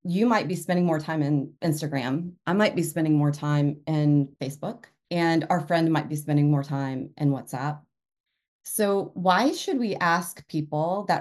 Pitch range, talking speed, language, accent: 145-175 Hz, 175 wpm, English, American